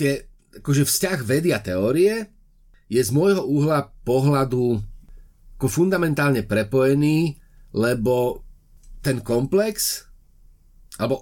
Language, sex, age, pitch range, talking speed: Slovak, male, 30-49, 115-155 Hz, 85 wpm